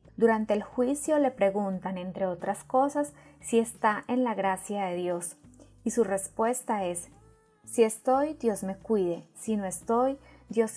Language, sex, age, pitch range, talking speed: Spanish, female, 20-39, 190-235 Hz, 155 wpm